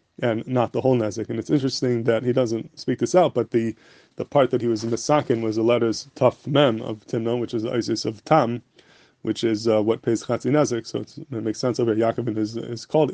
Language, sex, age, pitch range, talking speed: English, male, 20-39, 115-125 Hz, 245 wpm